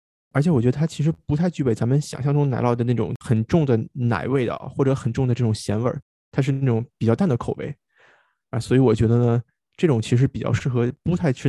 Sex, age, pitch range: male, 20-39, 115-140 Hz